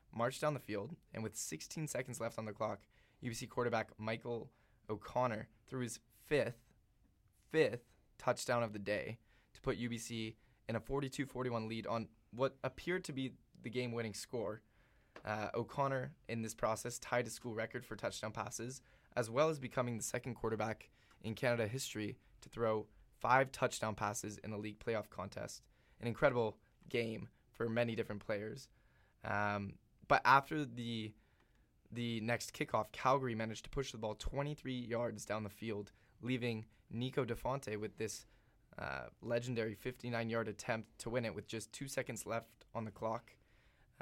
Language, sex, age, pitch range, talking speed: English, male, 20-39, 110-125 Hz, 160 wpm